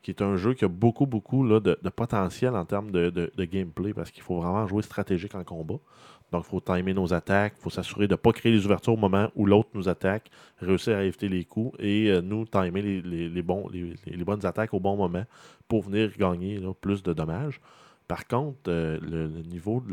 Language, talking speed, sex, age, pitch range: French, 230 wpm, male, 20-39, 90-110 Hz